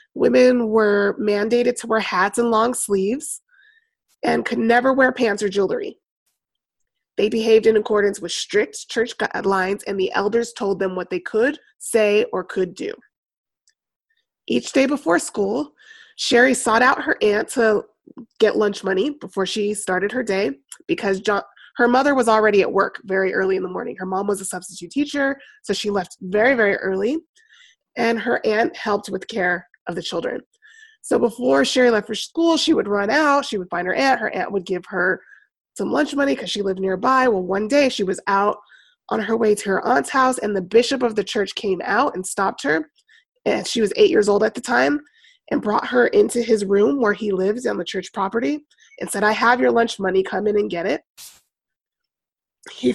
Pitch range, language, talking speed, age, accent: 200-265 Hz, English, 195 wpm, 20-39, American